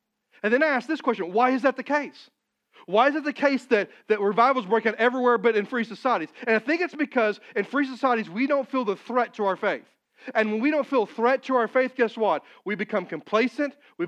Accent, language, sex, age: American, English, male, 40-59